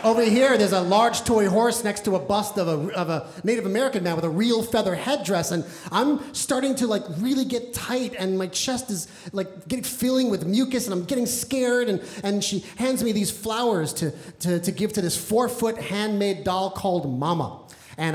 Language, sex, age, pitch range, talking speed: English, male, 30-49, 185-260 Hz, 210 wpm